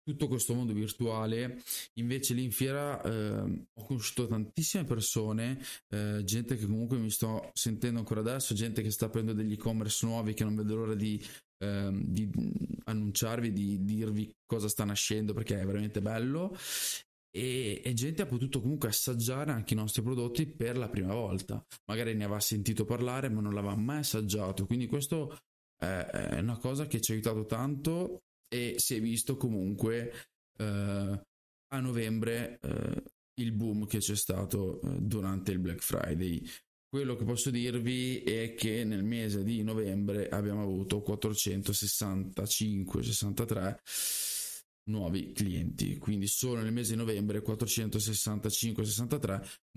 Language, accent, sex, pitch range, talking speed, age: Italian, native, male, 105-120 Hz, 145 wpm, 20-39